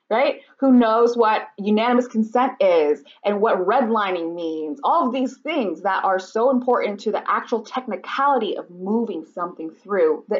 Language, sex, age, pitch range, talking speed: English, female, 20-39, 195-275 Hz, 160 wpm